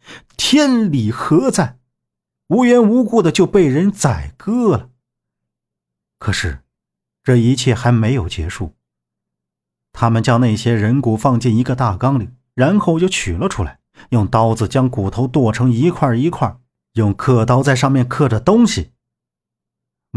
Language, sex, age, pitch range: Chinese, male, 50-69, 105-155 Hz